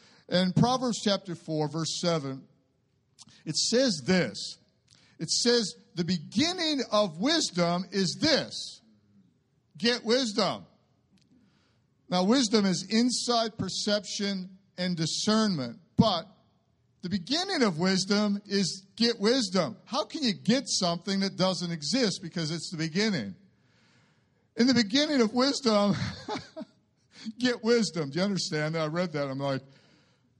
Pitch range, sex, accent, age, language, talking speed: 170-225 Hz, male, American, 50-69, English, 120 wpm